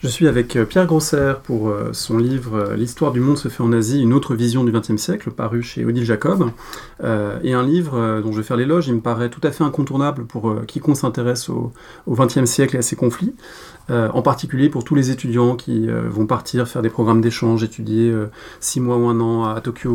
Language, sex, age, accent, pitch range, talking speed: English, male, 30-49, French, 115-140 Hz, 220 wpm